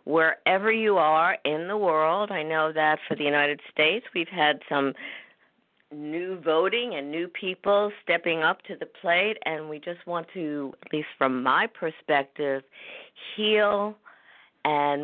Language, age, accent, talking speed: English, 50-69, American, 150 wpm